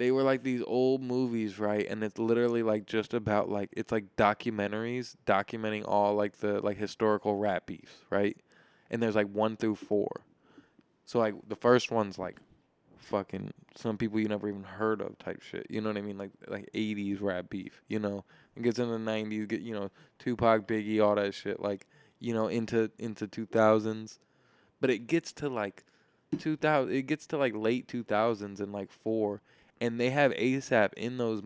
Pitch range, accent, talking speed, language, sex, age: 105-120 Hz, American, 195 wpm, English, male, 20-39